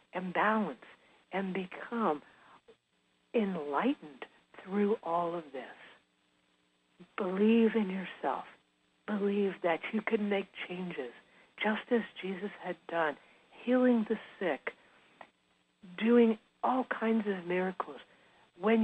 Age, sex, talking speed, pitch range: 60-79, female, 100 wpm, 180-225 Hz